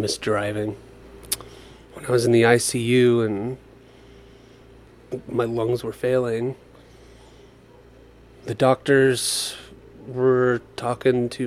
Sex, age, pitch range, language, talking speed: male, 30-49, 115-130 Hz, English, 90 wpm